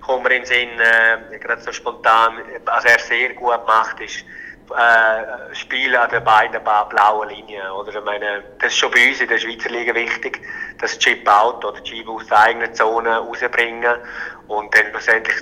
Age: 30-49